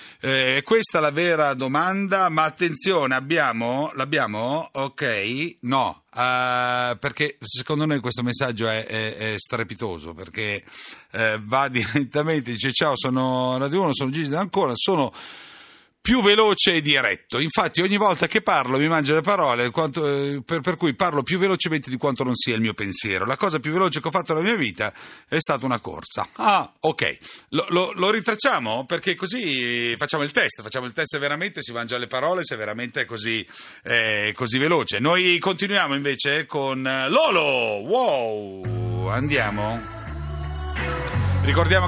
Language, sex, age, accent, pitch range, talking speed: Italian, male, 40-59, native, 115-165 Hz, 155 wpm